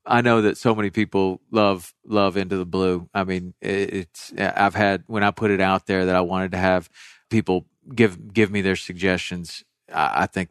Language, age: English, 40-59